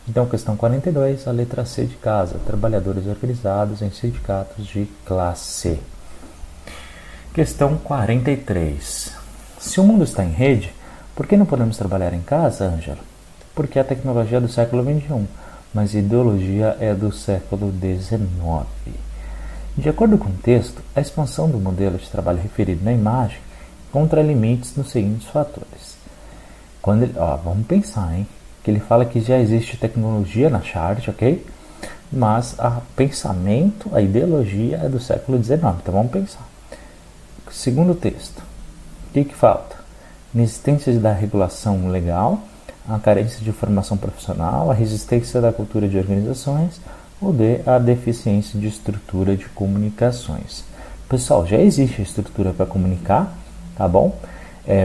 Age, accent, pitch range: 40-59, Brazilian, 95-125 Hz